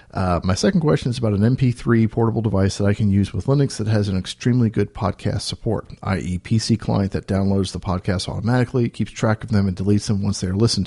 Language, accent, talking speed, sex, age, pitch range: English, American, 230 wpm, male, 40-59, 95-115 Hz